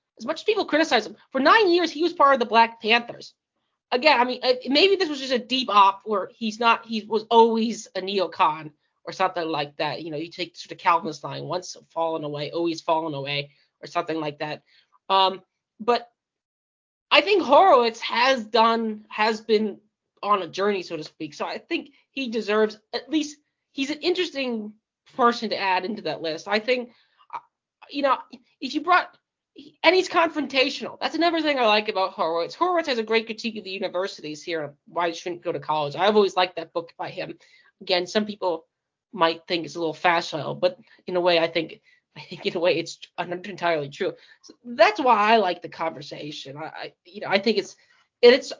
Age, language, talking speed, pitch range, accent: 30-49, English, 200 wpm, 170-250 Hz, American